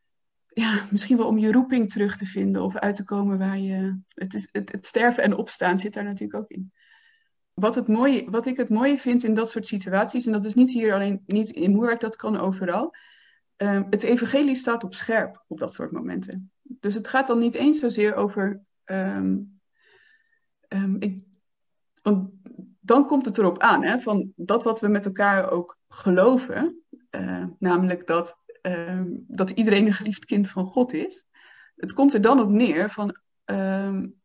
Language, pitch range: Dutch, 195-240 Hz